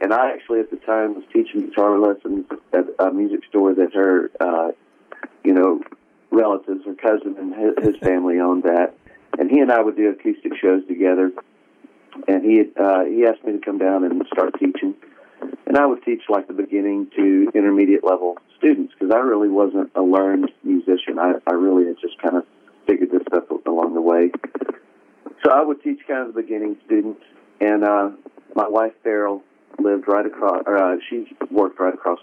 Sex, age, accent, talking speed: male, 50-69, American, 190 wpm